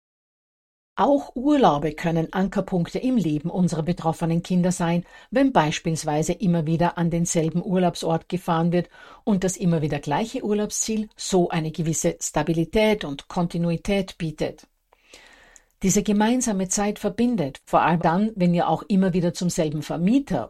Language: German